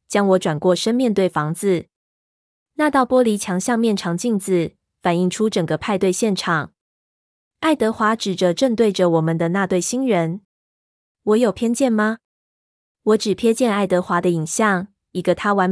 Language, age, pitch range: Chinese, 20-39, 175-215 Hz